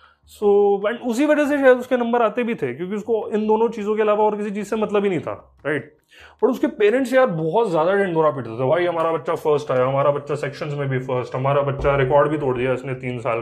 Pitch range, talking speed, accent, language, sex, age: 135-210 Hz, 260 wpm, native, Hindi, male, 20-39